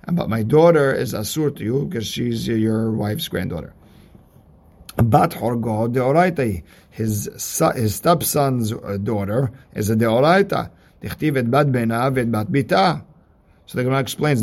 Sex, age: male, 50-69